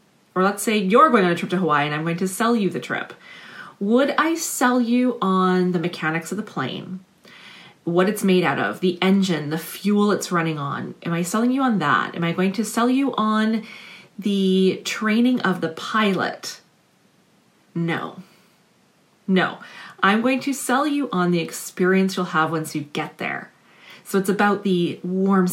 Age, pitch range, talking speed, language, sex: 30-49, 165-205 Hz, 185 wpm, English, female